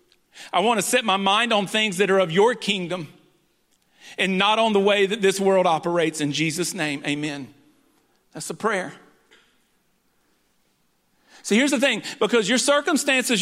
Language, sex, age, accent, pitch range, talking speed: English, male, 40-59, American, 200-245 Hz, 160 wpm